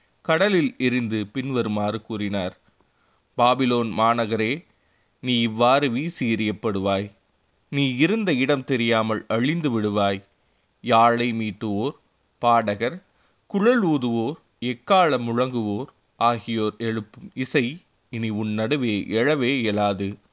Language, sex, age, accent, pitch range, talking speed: Tamil, male, 20-39, native, 105-135 Hz, 90 wpm